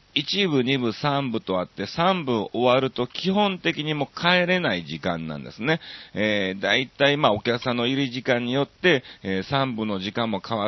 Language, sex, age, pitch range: Japanese, male, 40-59, 95-140 Hz